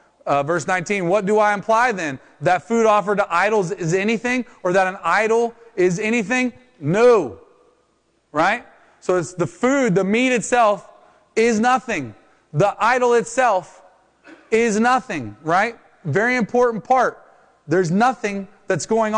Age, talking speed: 30-49, 140 wpm